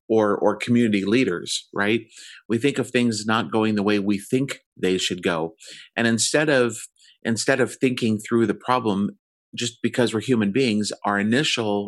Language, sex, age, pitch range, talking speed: English, male, 30-49, 95-120 Hz, 170 wpm